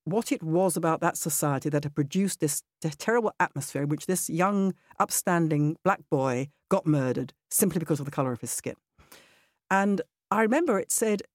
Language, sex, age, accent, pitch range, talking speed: English, female, 50-69, British, 160-235 Hz, 185 wpm